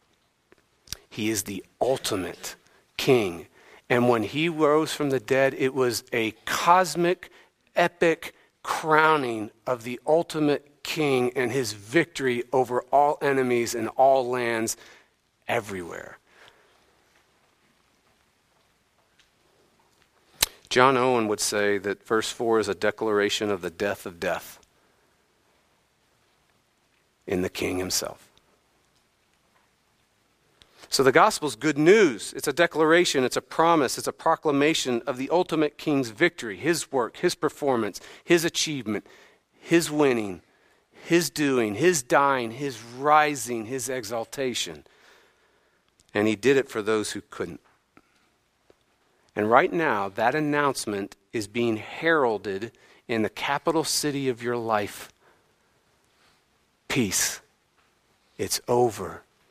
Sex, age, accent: male, 50-69, American